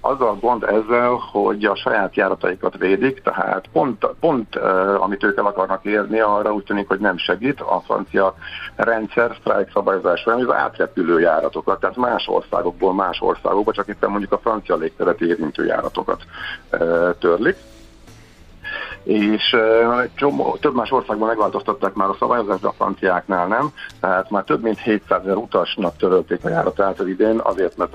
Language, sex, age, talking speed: Hungarian, male, 50-69, 155 wpm